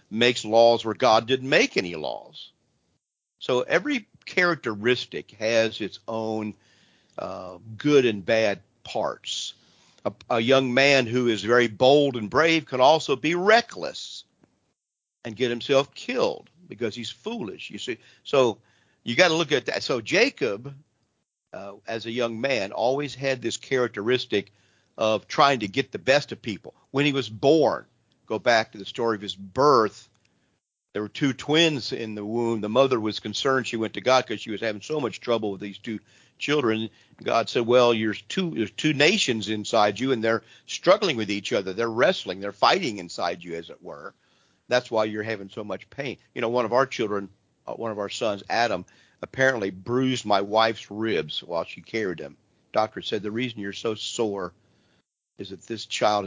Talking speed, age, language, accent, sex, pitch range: 180 wpm, 50-69, English, American, male, 105-130 Hz